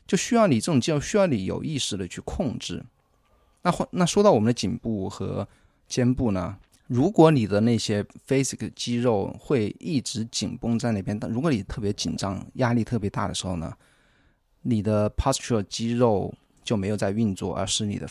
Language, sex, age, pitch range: Chinese, male, 20-39, 100-125 Hz